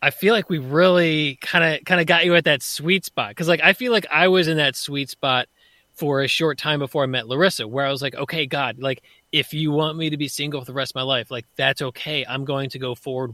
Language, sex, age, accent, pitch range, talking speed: English, male, 20-39, American, 130-155 Hz, 270 wpm